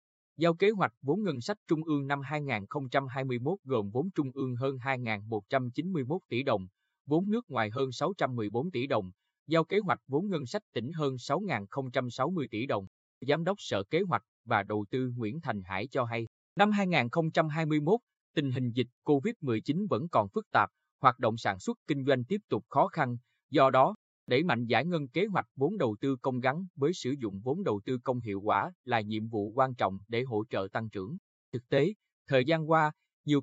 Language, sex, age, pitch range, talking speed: Vietnamese, male, 20-39, 120-160 Hz, 190 wpm